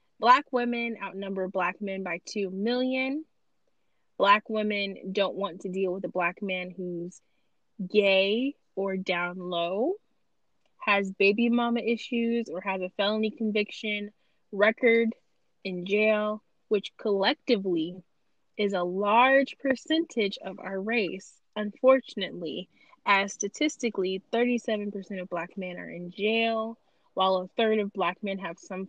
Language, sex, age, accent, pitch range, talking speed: English, female, 20-39, American, 190-240 Hz, 130 wpm